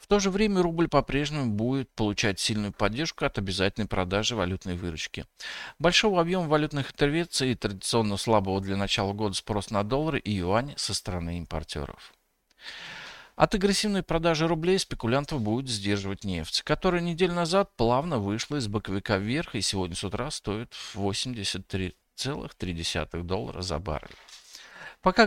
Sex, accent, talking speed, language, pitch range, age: male, native, 140 wpm, Russian, 95-155 Hz, 50-69